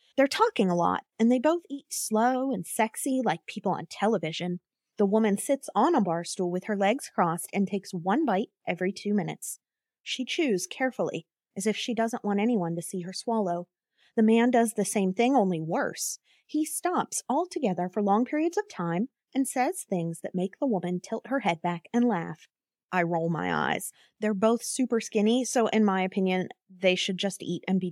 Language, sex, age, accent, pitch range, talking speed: English, female, 20-39, American, 180-255 Hz, 200 wpm